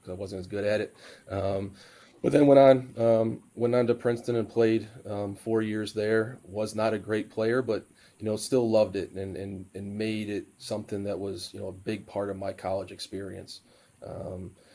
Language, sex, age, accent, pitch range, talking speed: English, male, 30-49, American, 100-110 Hz, 210 wpm